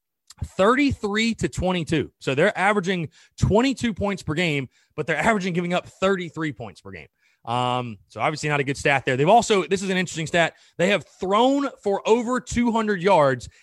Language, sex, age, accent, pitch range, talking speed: English, male, 30-49, American, 140-195 Hz, 180 wpm